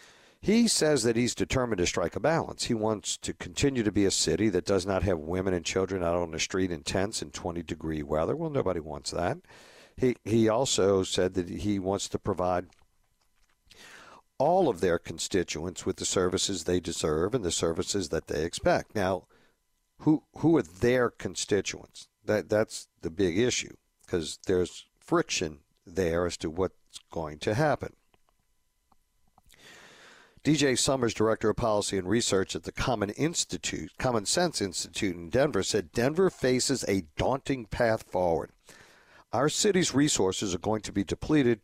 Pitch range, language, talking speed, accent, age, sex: 90-125 Hz, English, 165 wpm, American, 60-79, male